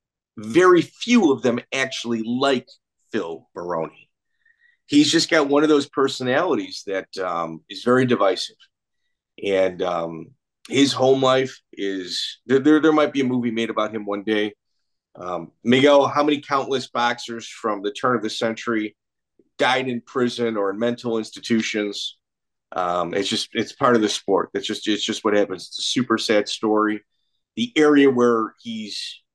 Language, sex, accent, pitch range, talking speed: English, male, American, 115-140 Hz, 165 wpm